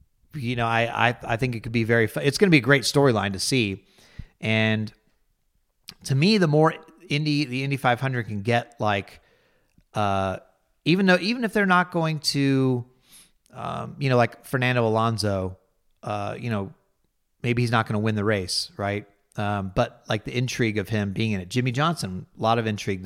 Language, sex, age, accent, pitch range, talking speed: English, male, 30-49, American, 110-135 Hz, 195 wpm